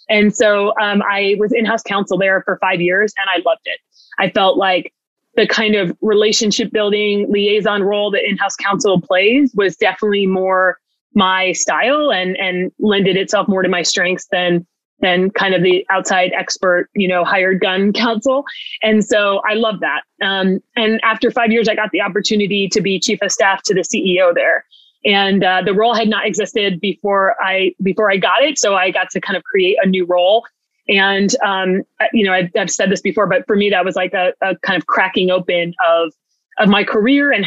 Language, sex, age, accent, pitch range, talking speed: English, female, 30-49, American, 185-220 Hz, 205 wpm